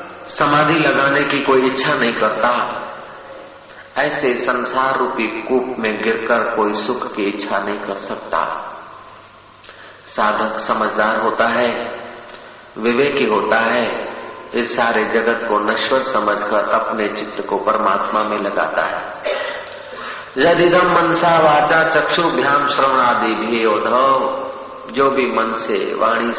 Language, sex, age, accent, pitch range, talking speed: Hindi, male, 50-69, native, 110-150 Hz, 125 wpm